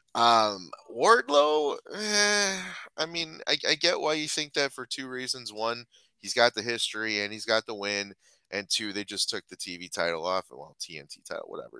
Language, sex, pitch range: English, male, 95-120 Hz